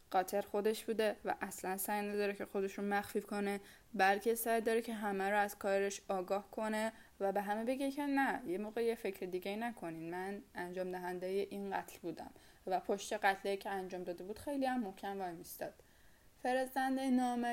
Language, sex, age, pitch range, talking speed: Persian, female, 10-29, 195-225 Hz, 180 wpm